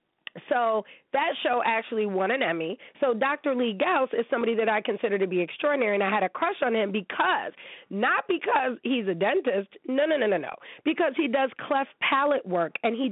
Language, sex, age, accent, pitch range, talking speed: English, female, 30-49, American, 205-270 Hz, 205 wpm